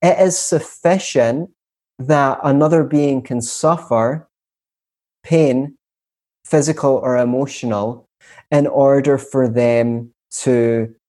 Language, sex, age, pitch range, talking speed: English, male, 20-39, 120-145 Hz, 90 wpm